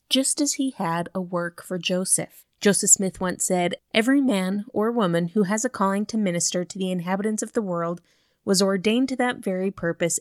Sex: female